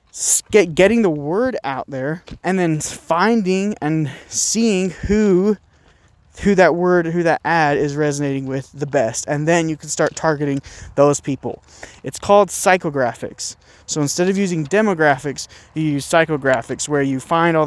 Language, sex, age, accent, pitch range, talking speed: English, male, 20-39, American, 150-195 Hz, 155 wpm